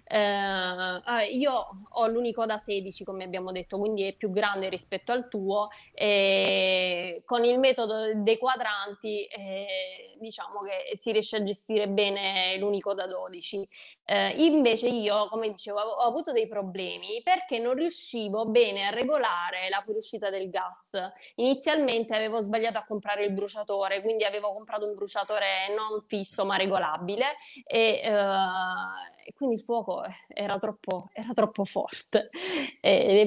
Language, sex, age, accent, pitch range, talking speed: Italian, female, 20-39, native, 200-255 Hz, 145 wpm